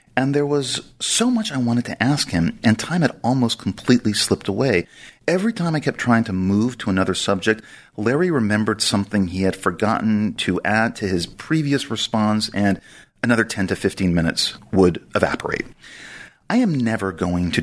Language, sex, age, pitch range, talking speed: English, male, 40-59, 90-110 Hz, 175 wpm